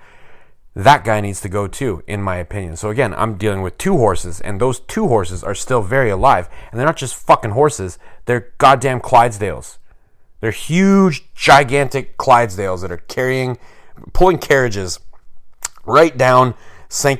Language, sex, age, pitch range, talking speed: English, male, 30-49, 90-115 Hz, 155 wpm